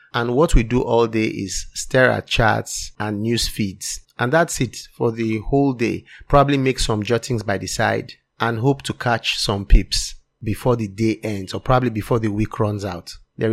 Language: English